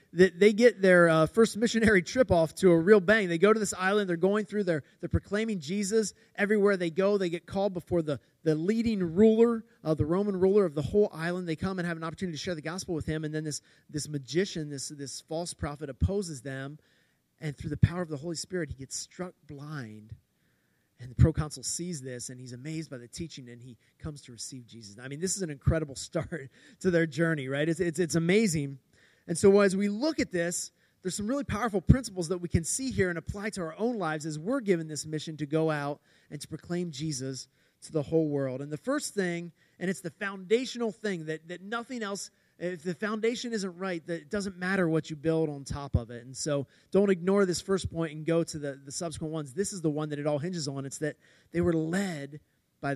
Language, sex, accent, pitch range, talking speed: English, male, American, 150-195 Hz, 235 wpm